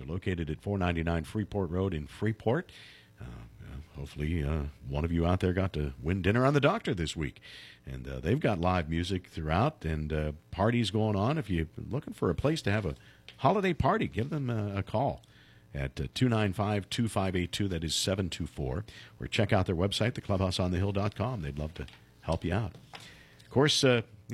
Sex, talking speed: male, 185 wpm